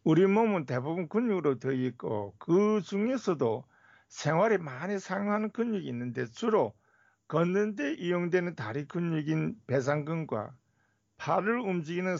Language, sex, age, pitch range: Korean, male, 50-69, 125-195 Hz